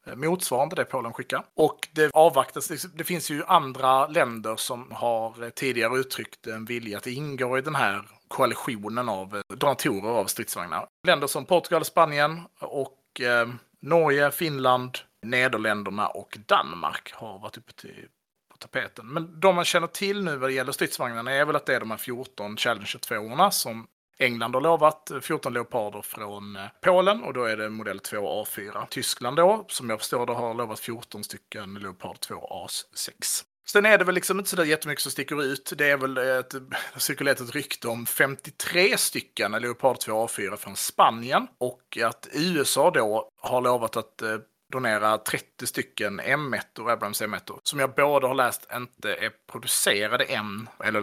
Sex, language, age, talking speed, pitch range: male, Swedish, 30-49, 165 wpm, 115-155 Hz